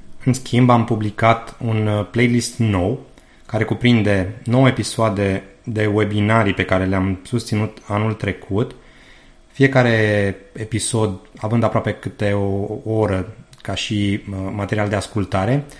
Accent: native